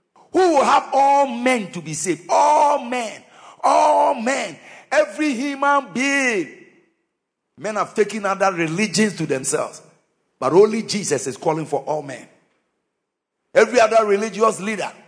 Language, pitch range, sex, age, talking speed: English, 160-255 Hz, male, 50-69, 135 wpm